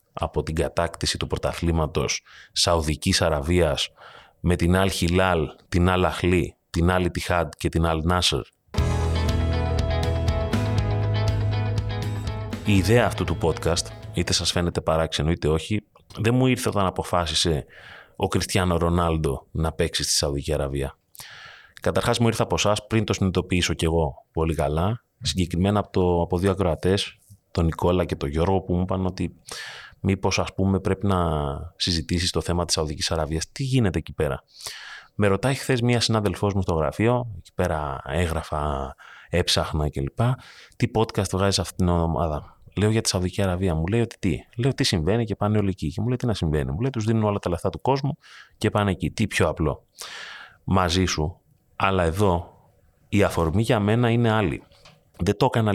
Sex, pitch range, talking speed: male, 80-105 Hz, 170 wpm